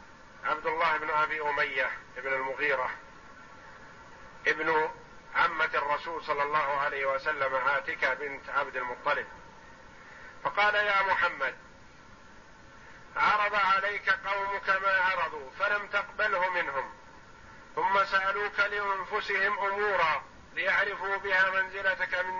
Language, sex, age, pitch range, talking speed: Arabic, male, 50-69, 180-195 Hz, 95 wpm